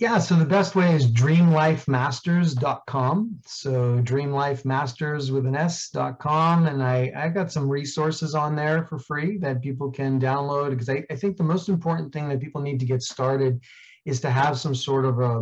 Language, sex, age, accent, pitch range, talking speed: English, male, 30-49, American, 125-150 Hz, 185 wpm